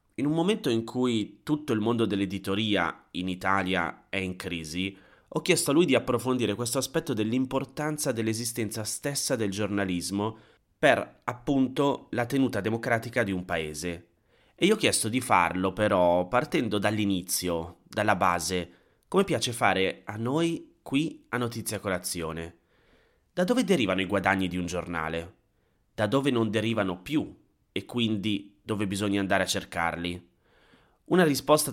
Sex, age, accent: male, 30-49, native